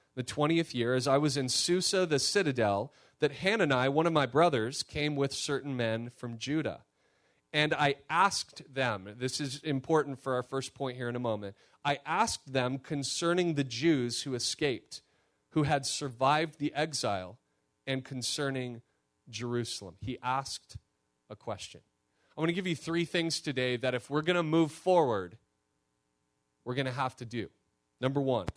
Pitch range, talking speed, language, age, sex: 115-150 Hz, 170 wpm, English, 30-49, male